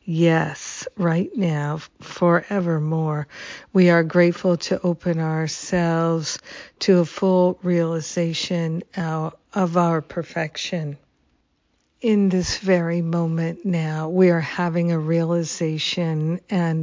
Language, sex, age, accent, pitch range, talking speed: English, female, 50-69, American, 165-185 Hz, 100 wpm